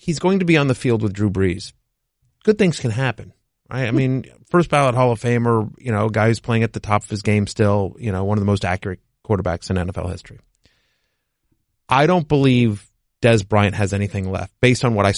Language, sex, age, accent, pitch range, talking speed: English, male, 30-49, American, 100-125 Hz, 225 wpm